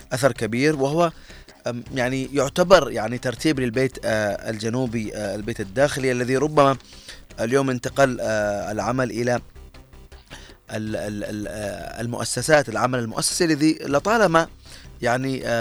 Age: 30-49